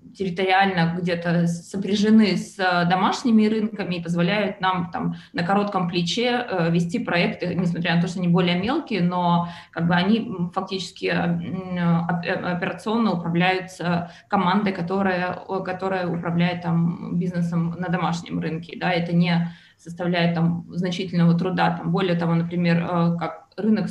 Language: Russian